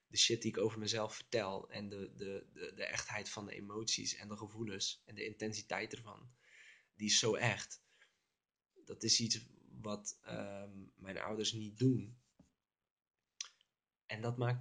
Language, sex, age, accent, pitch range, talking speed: Dutch, male, 20-39, Dutch, 105-135 Hz, 150 wpm